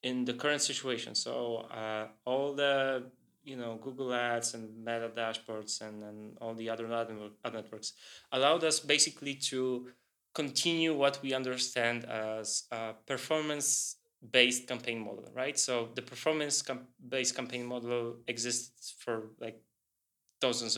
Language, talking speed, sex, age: English, 130 wpm, male, 20-39